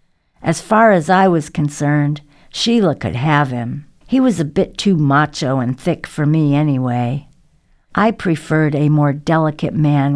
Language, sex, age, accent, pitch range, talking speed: English, female, 60-79, American, 140-165 Hz, 160 wpm